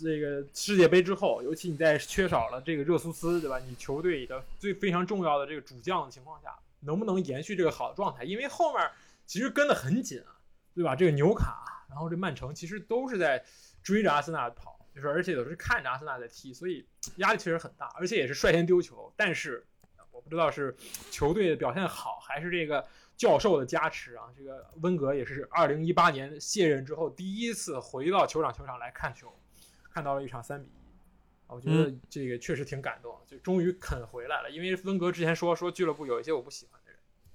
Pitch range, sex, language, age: 135-175 Hz, male, Chinese, 20-39